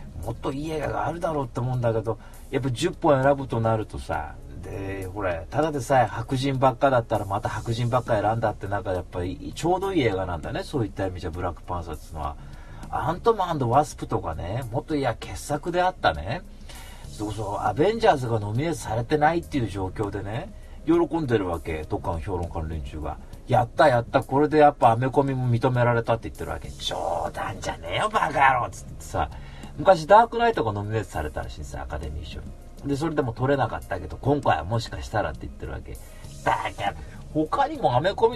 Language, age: Japanese, 40-59